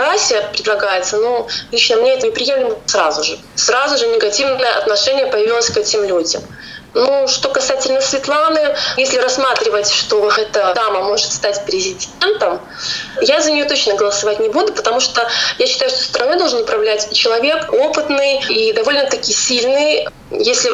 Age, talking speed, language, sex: 20-39, 140 wpm, Russian, female